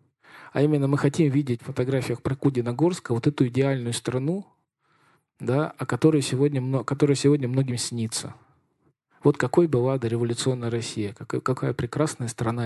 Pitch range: 130-155 Hz